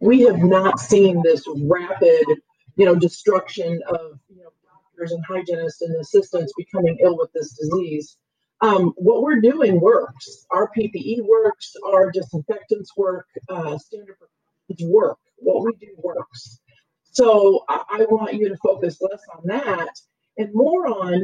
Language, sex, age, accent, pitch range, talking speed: English, female, 40-59, American, 175-230 Hz, 150 wpm